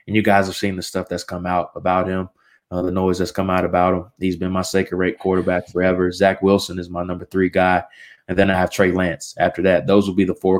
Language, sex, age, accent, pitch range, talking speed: English, male, 20-39, American, 90-100 Hz, 265 wpm